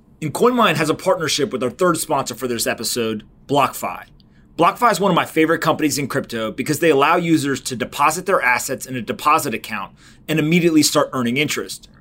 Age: 30-49